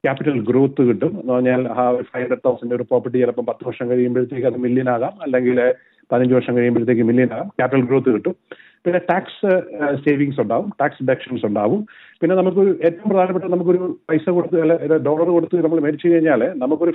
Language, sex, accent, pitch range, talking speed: Malayalam, male, native, 130-165 Hz, 175 wpm